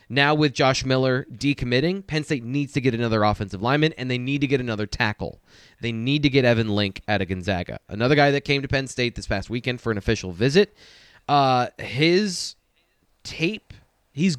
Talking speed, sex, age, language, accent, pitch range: 195 wpm, male, 20-39, English, American, 115-150 Hz